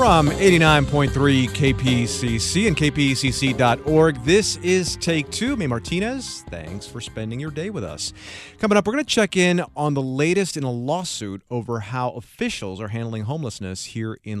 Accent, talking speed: American, 160 wpm